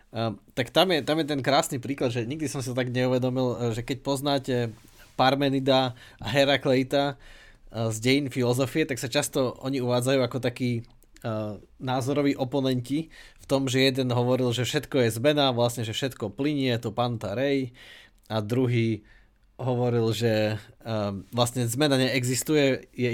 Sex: male